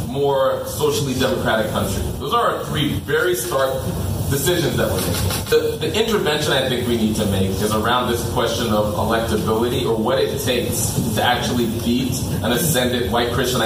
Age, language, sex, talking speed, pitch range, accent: 30-49, English, male, 175 wpm, 115-155 Hz, American